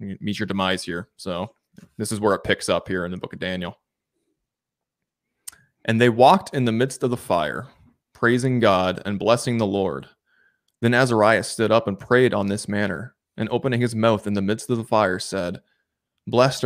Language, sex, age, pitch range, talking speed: English, male, 20-39, 105-125 Hz, 190 wpm